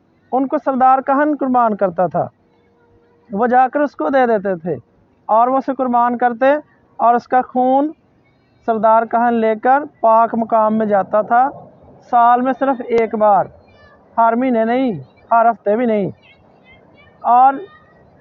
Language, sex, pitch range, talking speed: Hindi, male, 220-265 Hz, 135 wpm